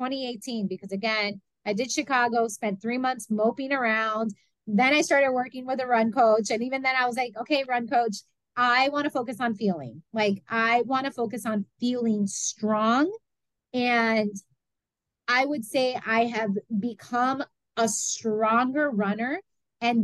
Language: English